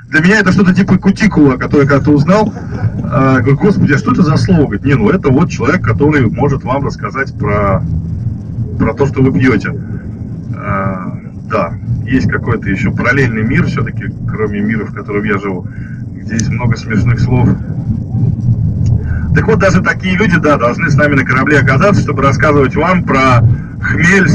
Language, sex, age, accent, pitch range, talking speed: Russian, male, 20-39, native, 115-145 Hz, 170 wpm